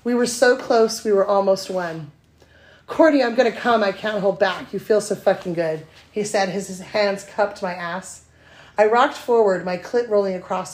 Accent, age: American, 30-49